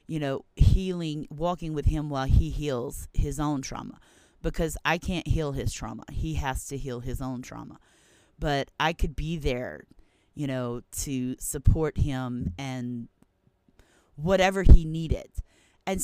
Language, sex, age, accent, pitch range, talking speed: English, female, 30-49, American, 130-160 Hz, 150 wpm